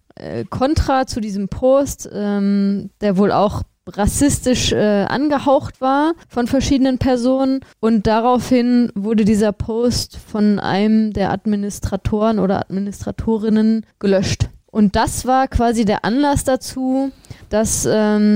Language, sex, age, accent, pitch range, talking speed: German, female, 20-39, German, 200-230 Hz, 115 wpm